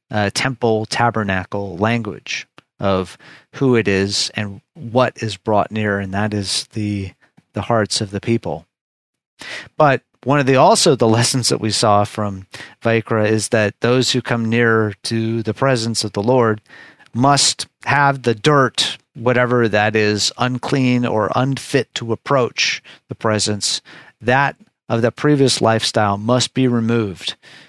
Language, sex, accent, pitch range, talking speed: English, male, American, 105-125 Hz, 145 wpm